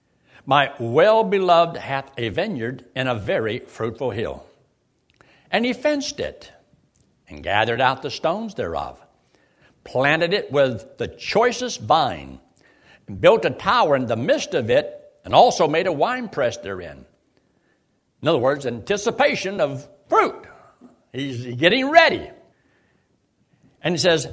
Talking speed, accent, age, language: 130 wpm, American, 60-79, English